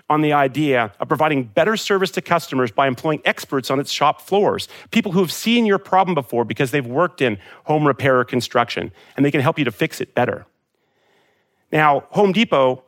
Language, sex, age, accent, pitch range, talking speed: English, male, 40-59, American, 125-180 Hz, 200 wpm